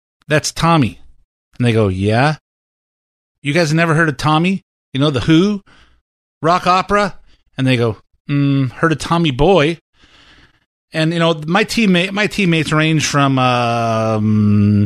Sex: male